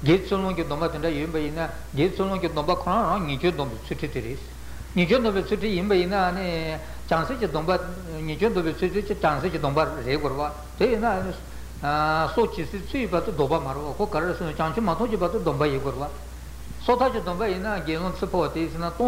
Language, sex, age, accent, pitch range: Italian, male, 60-79, Indian, 150-200 Hz